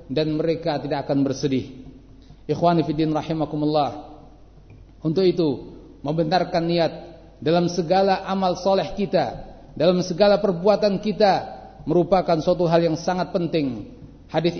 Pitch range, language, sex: 155-195 Hz, Indonesian, male